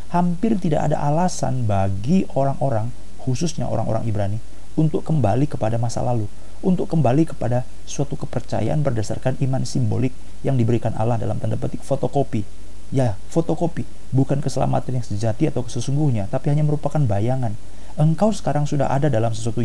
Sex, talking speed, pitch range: male, 145 wpm, 110-150 Hz